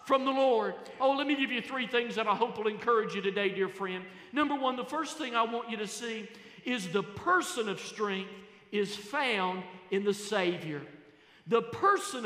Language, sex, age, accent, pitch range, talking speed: English, male, 50-69, American, 205-255 Hz, 200 wpm